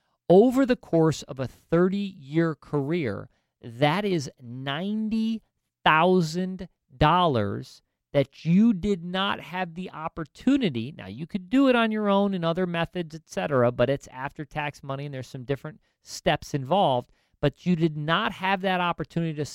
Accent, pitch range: American, 135-180 Hz